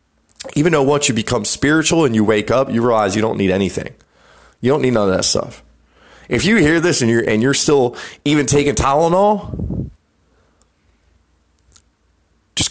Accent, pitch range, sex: American, 100-145 Hz, male